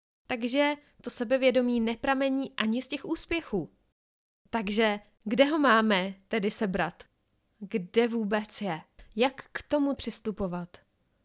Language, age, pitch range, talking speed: Czech, 20-39, 205-260 Hz, 110 wpm